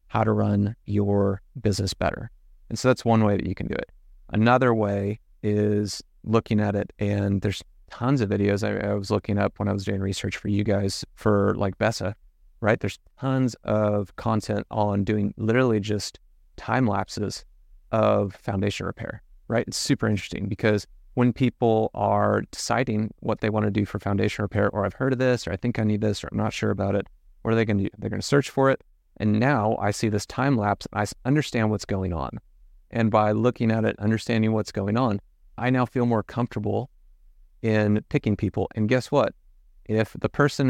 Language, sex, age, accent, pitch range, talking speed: English, male, 30-49, American, 100-115 Hz, 205 wpm